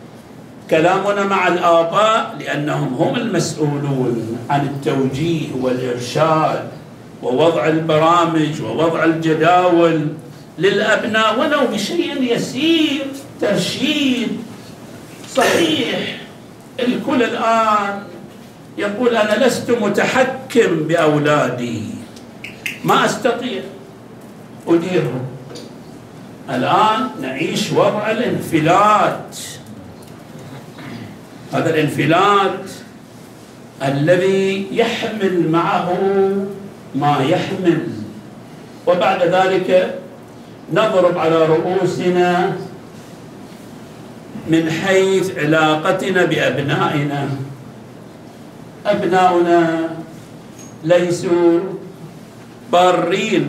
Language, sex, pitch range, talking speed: Arabic, male, 155-195 Hz, 60 wpm